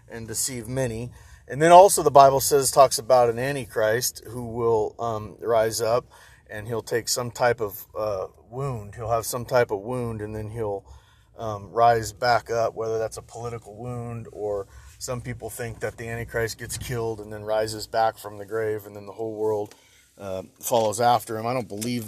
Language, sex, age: English, male, 40-59